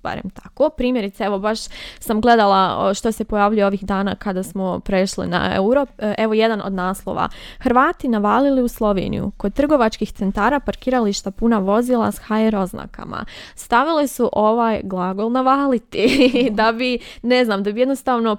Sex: female